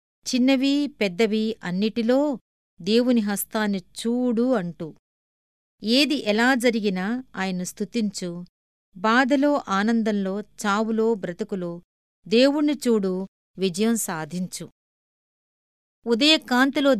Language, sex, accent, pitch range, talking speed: Telugu, female, native, 190-245 Hz, 75 wpm